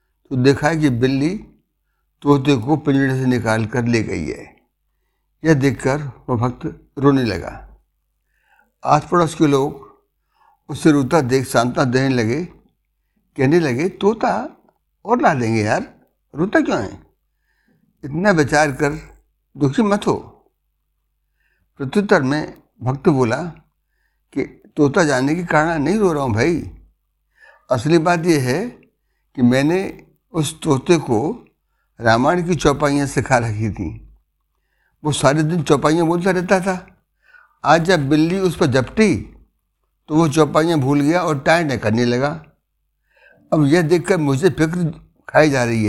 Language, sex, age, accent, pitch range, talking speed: Hindi, male, 60-79, native, 125-165 Hz, 140 wpm